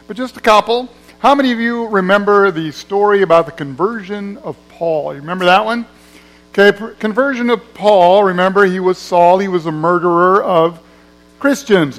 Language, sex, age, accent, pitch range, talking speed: English, male, 50-69, American, 160-215 Hz, 170 wpm